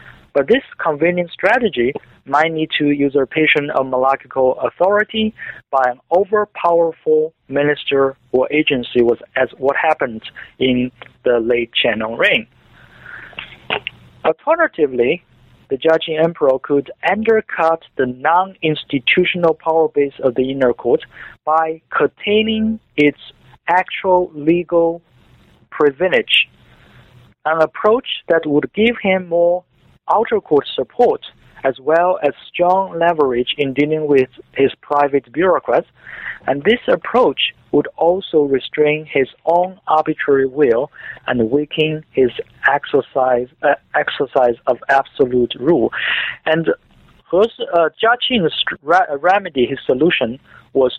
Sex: male